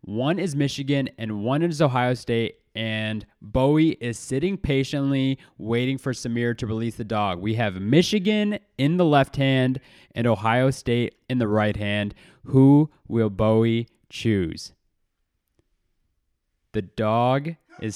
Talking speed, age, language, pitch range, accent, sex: 135 wpm, 20-39, English, 125-155 Hz, American, male